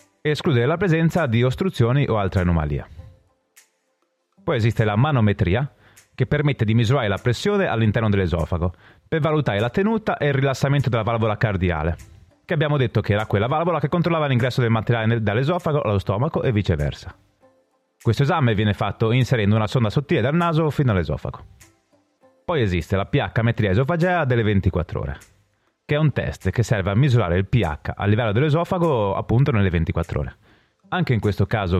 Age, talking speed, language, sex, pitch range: 30-49, 165 wpm, Italian, male, 100-145 Hz